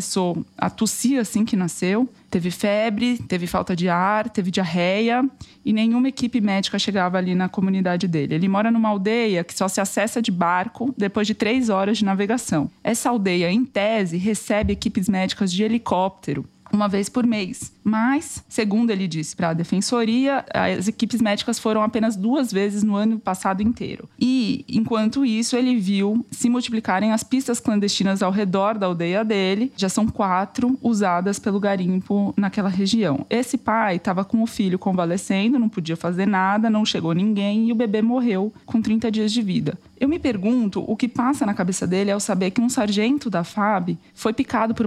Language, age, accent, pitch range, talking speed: Portuguese, 20-39, Brazilian, 190-230 Hz, 180 wpm